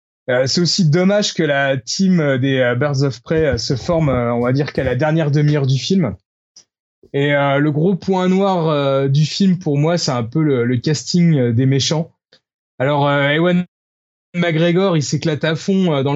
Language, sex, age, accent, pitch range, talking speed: French, male, 20-39, French, 135-175 Hz, 165 wpm